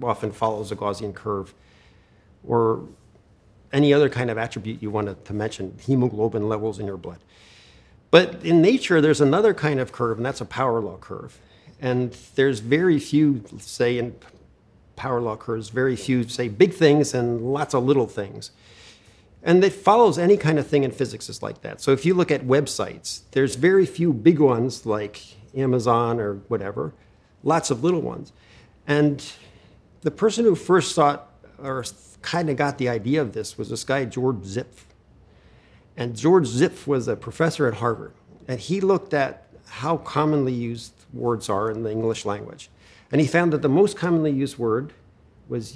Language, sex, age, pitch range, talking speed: English, male, 50-69, 110-150 Hz, 175 wpm